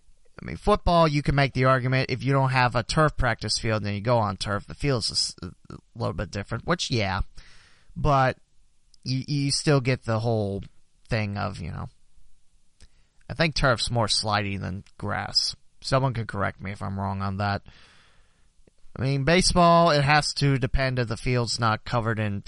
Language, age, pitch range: English, 30-49, 100-130 Hz